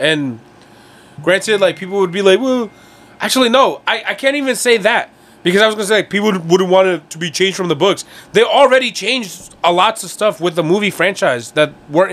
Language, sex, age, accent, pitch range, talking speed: English, male, 30-49, American, 155-205 Hz, 230 wpm